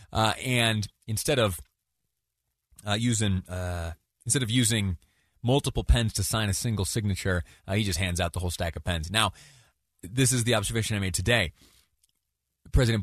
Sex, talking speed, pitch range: male, 165 wpm, 95-130 Hz